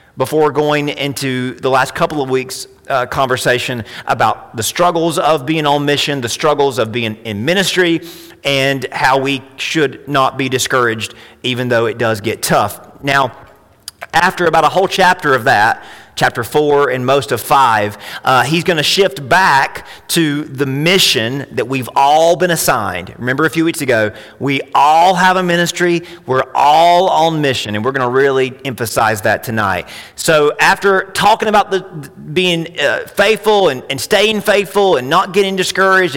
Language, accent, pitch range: English, American, 130-175 Hz